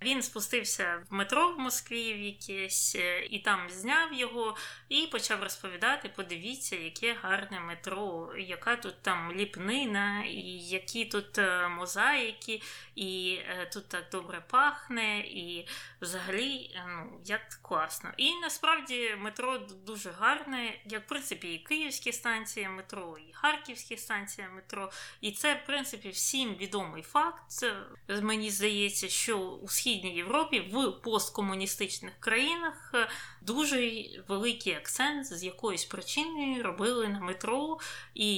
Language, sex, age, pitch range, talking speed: Ukrainian, female, 20-39, 185-240 Hz, 125 wpm